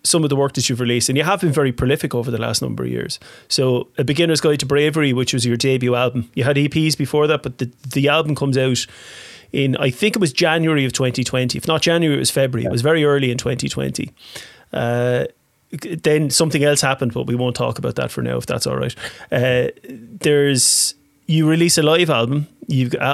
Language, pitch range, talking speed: English, 125-155 Hz, 225 wpm